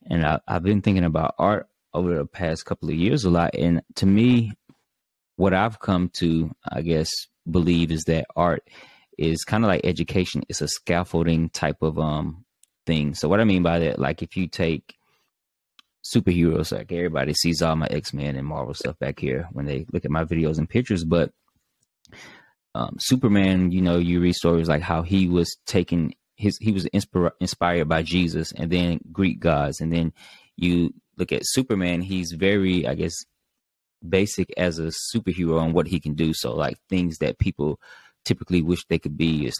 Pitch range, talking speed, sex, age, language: 80-90 Hz, 185 wpm, male, 20-39, English